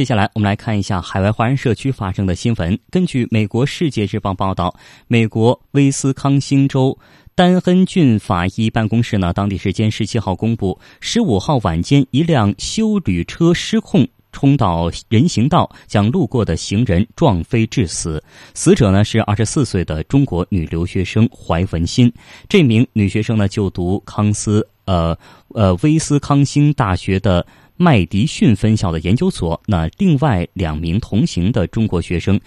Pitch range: 90-125 Hz